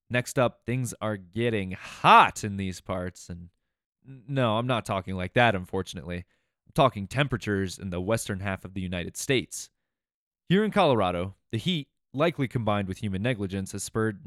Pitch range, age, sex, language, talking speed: 95-130 Hz, 20-39, male, English, 170 wpm